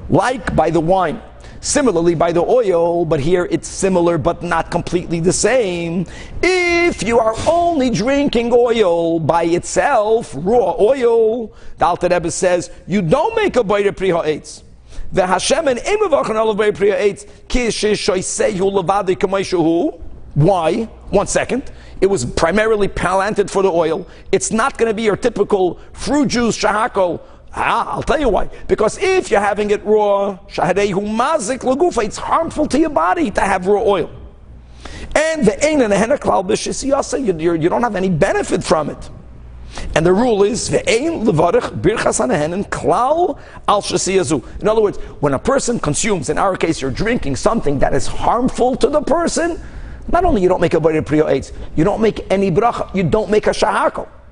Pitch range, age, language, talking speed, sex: 170-240 Hz, 50-69, English, 140 wpm, male